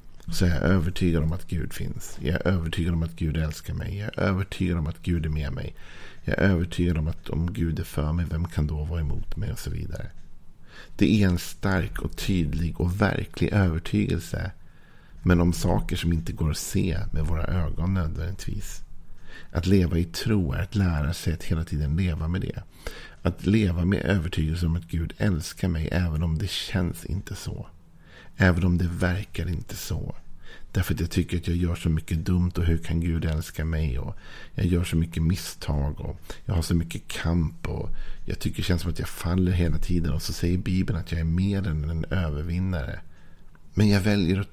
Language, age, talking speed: Swedish, 50-69, 210 wpm